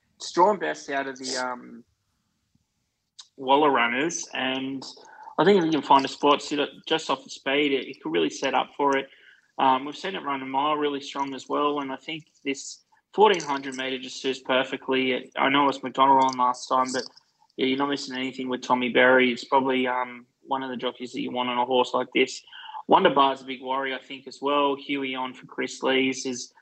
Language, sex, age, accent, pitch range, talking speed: English, male, 20-39, Australian, 125-135 Hz, 220 wpm